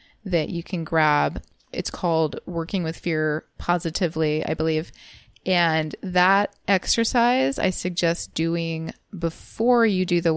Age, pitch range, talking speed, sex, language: 20-39, 160-195 Hz, 125 wpm, female, English